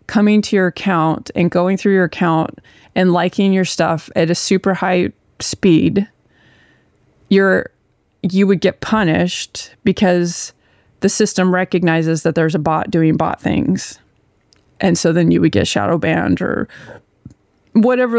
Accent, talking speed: American, 145 wpm